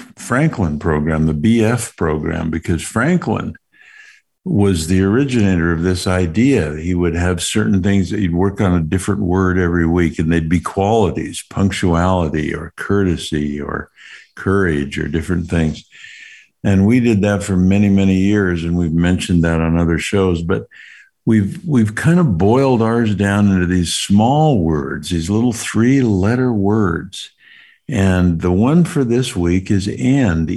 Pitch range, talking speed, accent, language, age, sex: 85-110 Hz, 155 wpm, American, English, 60-79, male